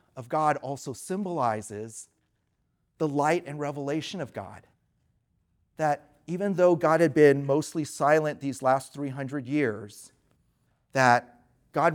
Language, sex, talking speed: English, male, 120 wpm